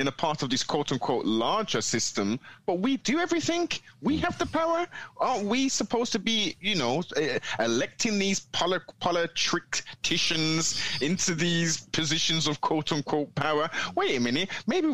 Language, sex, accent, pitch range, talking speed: English, male, British, 125-200 Hz, 155 wpm